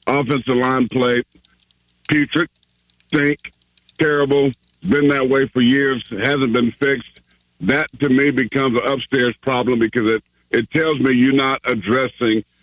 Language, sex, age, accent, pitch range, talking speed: English, male, 50-69, American, 125-195 Hz, 140 wpm